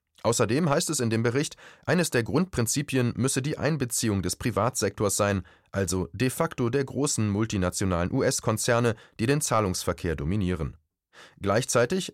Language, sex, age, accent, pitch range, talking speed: German, male, 30-49, German, 95-135 Hz, 135 wpm